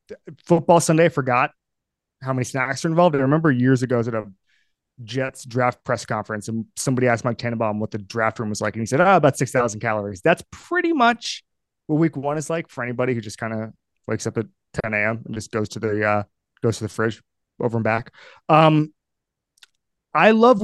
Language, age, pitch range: English, 20-39, 120-170 Hz